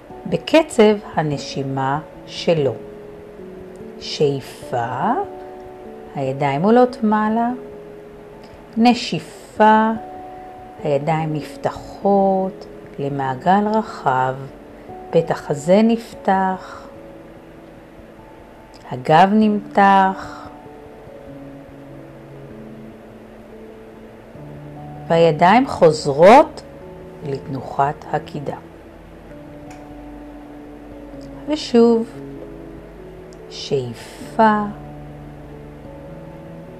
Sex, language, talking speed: female, Hebrew, 40 wpm